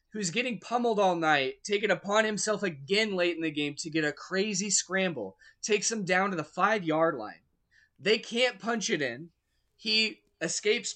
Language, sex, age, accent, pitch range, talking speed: English, male, 20-39, American, 160-210 Hz, 175 wpm